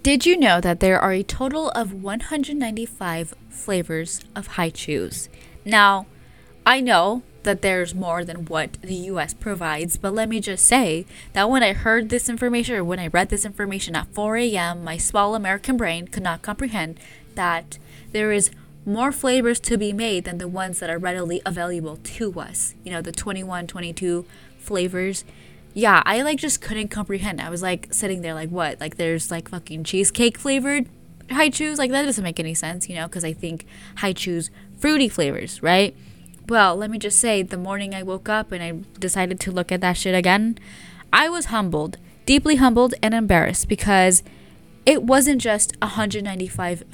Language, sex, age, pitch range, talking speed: English, female, 10-29, 175-225 Hz, 180 wpm